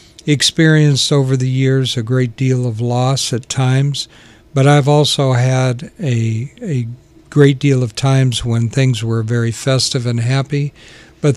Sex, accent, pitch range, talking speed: male, American, 125-145 Hz, 155 wpm